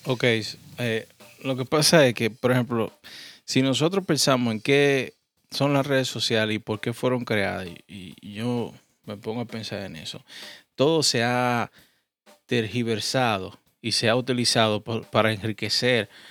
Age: 20-39